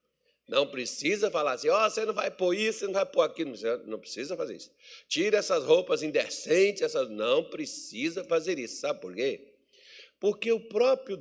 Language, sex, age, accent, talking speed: Portuguese, male, 50-69, Brazilian, 170 wpm